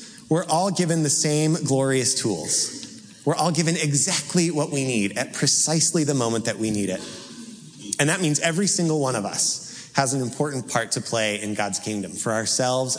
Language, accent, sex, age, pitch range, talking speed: English, American, male, 30-49, 115-145 Hz, 190 wpm